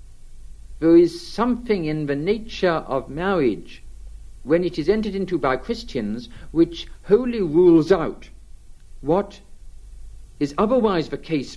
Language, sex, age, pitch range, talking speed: English, male, 60-79, 140-220 Hz, 125 wpm